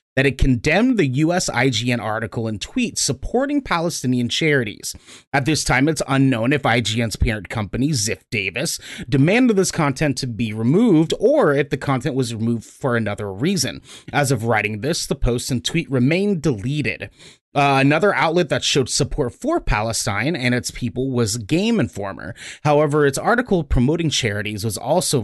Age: 30-49